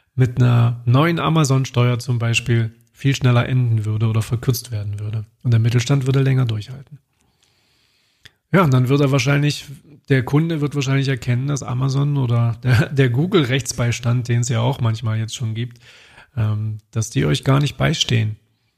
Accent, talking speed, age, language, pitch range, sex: German, 165 wpm, 40-59, German, 120-135 Hz, male